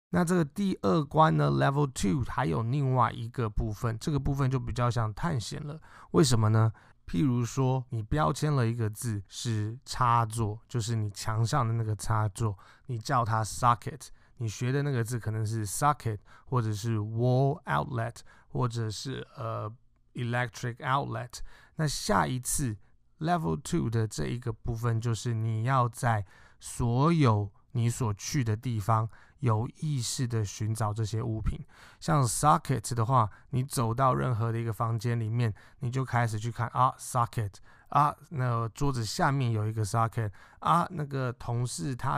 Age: 20-39